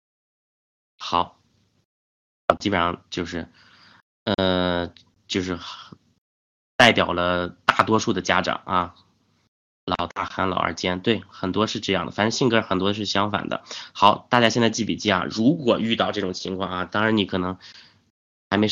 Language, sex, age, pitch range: Chinese, male, 20-39, 90-110 Hz